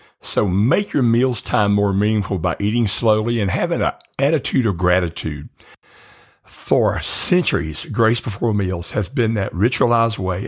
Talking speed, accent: 150 wpm, American